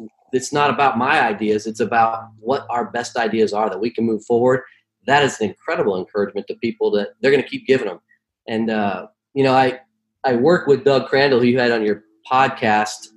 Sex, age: male, 30-49